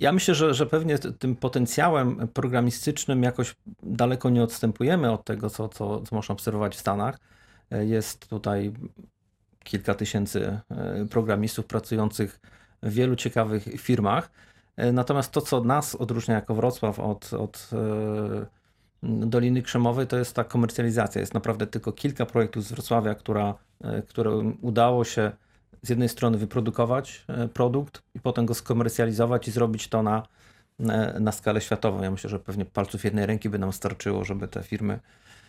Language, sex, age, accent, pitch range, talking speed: Polish, male, 40-59, native, 105-120 Hz, 145 wpm